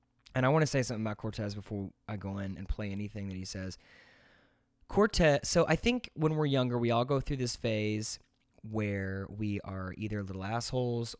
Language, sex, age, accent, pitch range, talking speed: English, male, 20-39, American, 110-150 Hz, 200 wpm